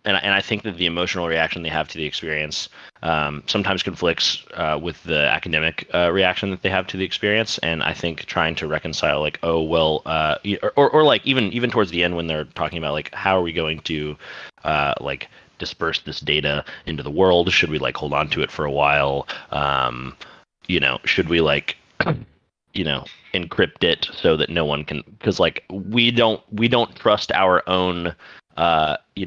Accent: American